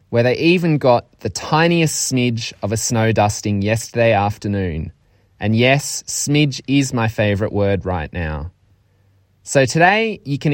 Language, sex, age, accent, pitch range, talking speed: English, male, 20-39, Australian, 105-145 Hz, 150 wpm